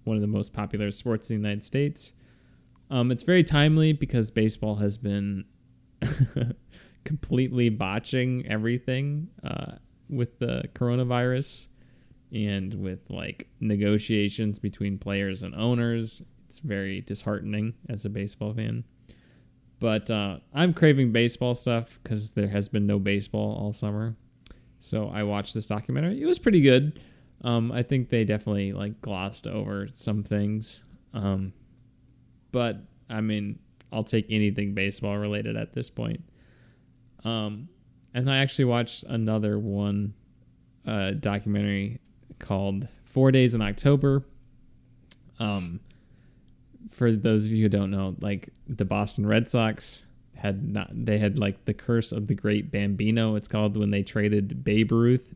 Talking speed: 140 wpm